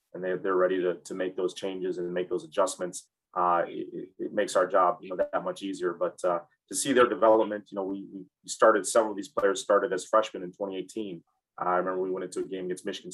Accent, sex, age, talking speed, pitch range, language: American, male, 30-49, 240 wpm, 90-105 Hz, English